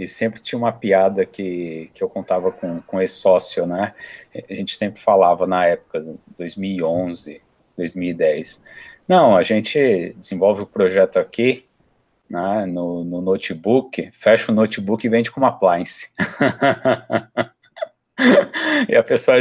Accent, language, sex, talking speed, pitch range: Brazilian, Portuguese, male, 135 wpm, 90-120 Hz